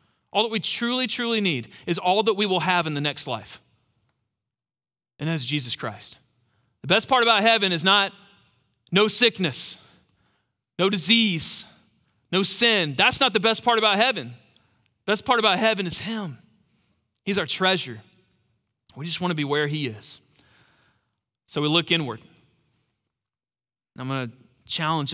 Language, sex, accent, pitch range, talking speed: English, male, American, 120-165 Hz, 160 wpm